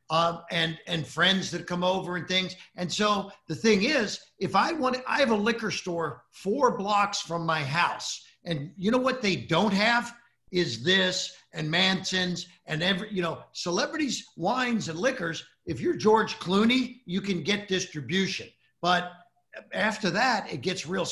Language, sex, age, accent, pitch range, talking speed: English, male, 50-69, American, 155-200 Hz, 170 wpm